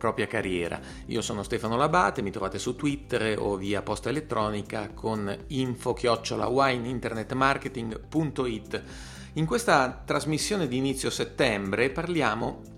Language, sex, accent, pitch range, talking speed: Italian, male, native, 100-120 Hz, 110 wpm